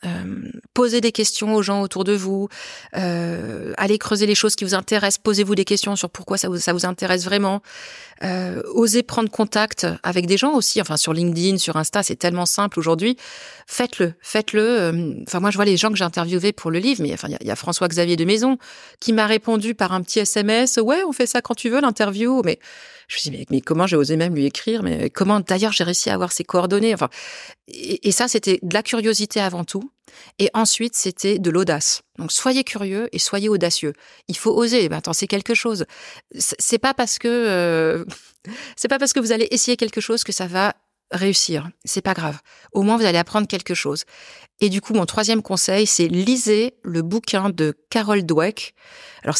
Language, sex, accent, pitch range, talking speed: French, female, French, 175-225 Hz, 215 wpm